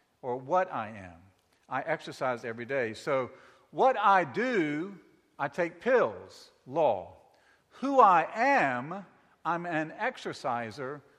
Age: 50-69